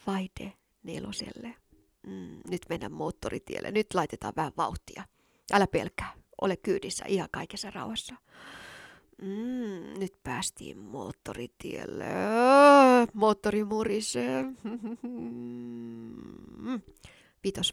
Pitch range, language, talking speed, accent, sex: 180-220 Hz, Finnish, 80 wpm, native, female